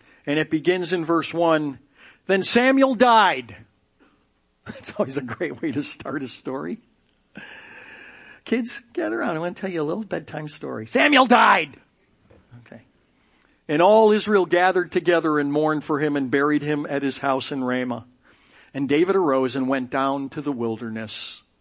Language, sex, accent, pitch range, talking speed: English, male, American, 140-185 Hz, 165 wpm